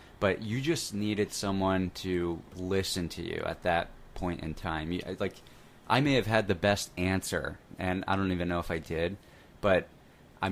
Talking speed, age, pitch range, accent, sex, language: 190 wpm, 20-39, 85-100 Hz, American, male, English